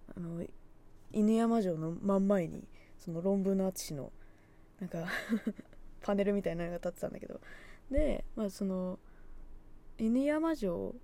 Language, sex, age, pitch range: Japanese, female, 20-39, 175-260 Hz